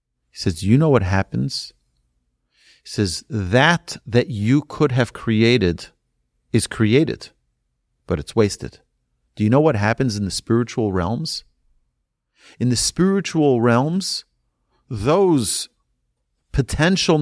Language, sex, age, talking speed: English, male, 40-59, 120 wpm